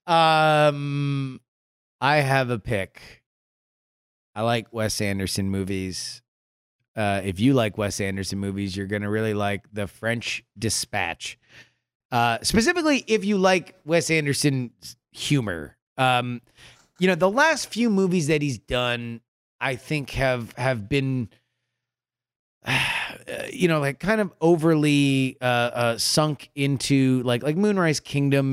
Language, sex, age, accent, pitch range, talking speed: English, male, 30-49, American, 115-145 Hz, 135 wpm